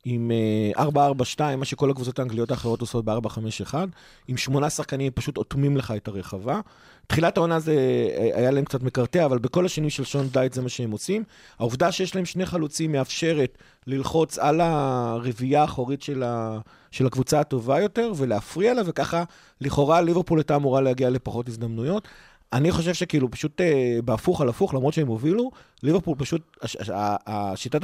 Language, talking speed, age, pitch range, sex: Hebrew, 160 wpm, 30-49, 125-160 Hz, male